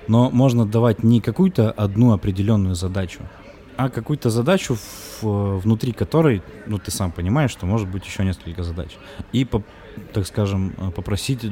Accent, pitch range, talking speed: native, 95-115 Hz, 140 wpm